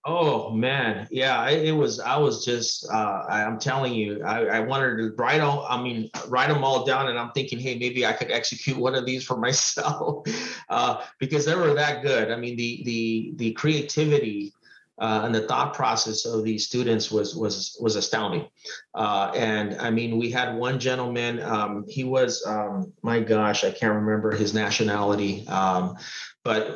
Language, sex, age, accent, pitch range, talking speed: English, male, 30-49, American, 110-130 Hz, 185 wpm